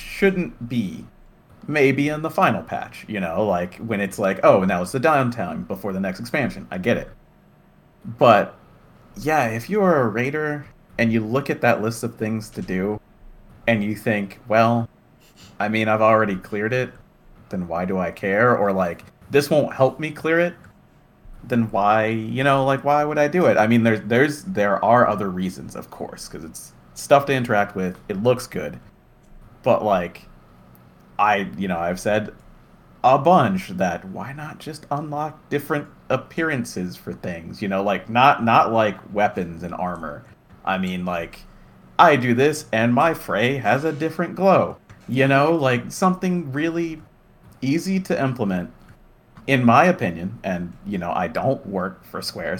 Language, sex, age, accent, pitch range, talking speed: English, male, 30-49, American, 100-145 Hz, 175 wpm